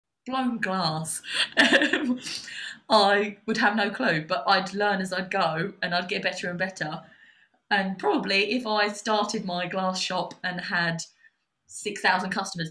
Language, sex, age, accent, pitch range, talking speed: English, female, 20-39, British, 175-200 Hz, 145 wpm